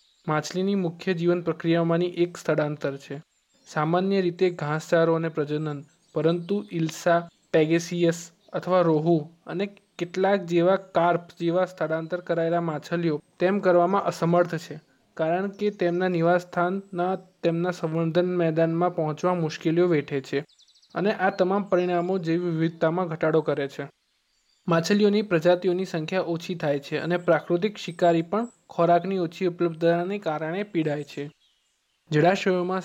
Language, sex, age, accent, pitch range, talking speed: Gujarati, male, 20-39, native, 160-185 Hz, 100 wpm